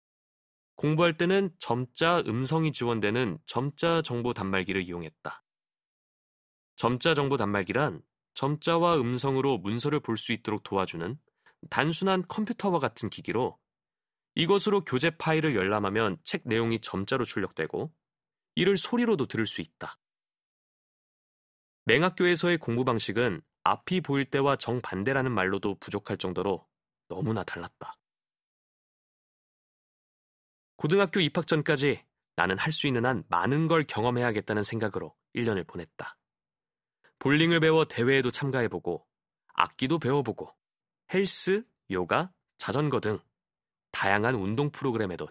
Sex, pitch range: male, 110-165 Hz